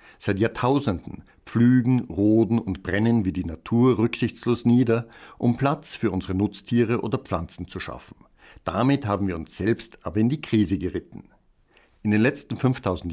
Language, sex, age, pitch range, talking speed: German, male, 60-79, 100-120 Hz, 155 wpm